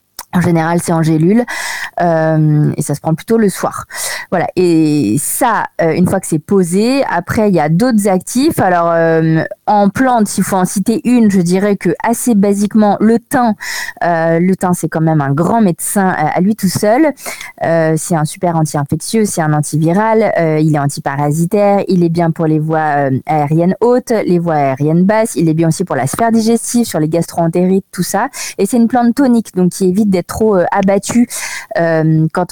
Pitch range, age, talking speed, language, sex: 165-215 Hz, 20-39, 195 wpm, French, female